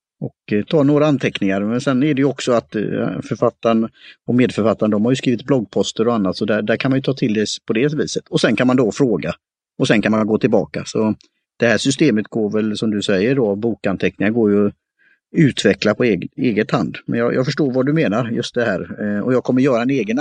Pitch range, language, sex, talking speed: 105-130 Hz, Swedish, male, 235 wpm